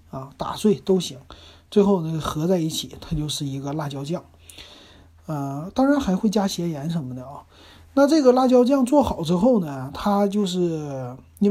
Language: Chinese